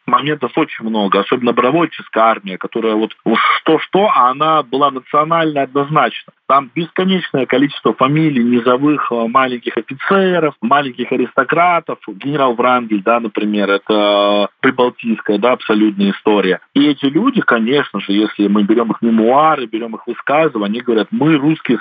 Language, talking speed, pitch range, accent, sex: Russian, 135 wpm, 125-160 Hz, native, male